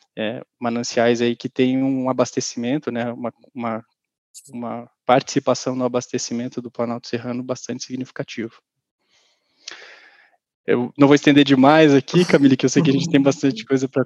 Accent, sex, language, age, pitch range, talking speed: Brazilian, male, Portuguese, 20-39, 120-140 Hz, 145 wpm